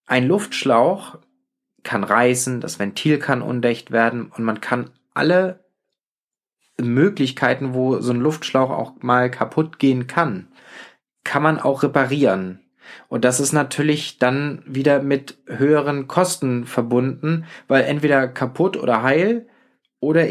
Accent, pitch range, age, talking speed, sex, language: German, 125-145 Hz, 20-39, 125 wpm, male, German